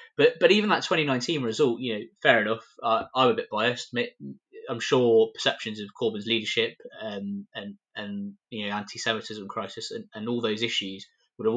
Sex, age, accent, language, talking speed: male, 20-39, British, English, 180 wpm